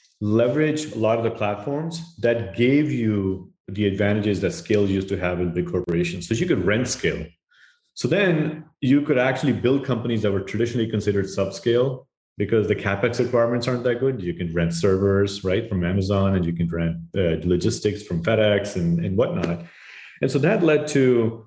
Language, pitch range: English, 95-120 Hz